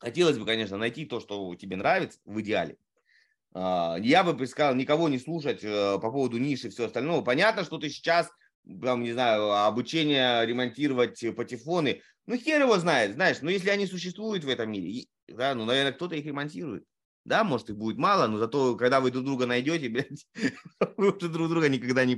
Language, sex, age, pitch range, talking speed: Russian, male, 20-39, 105-160 Hz, 185 wpm